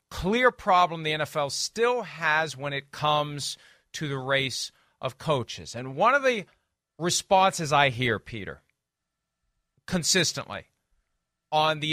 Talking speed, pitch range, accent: 125 wpm, 160-230 Hz, American